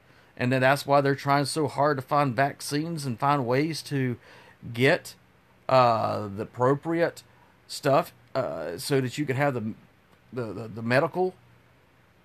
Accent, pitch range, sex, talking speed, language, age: American, 120-155 Hz, male, 150 wpm, English, 40-59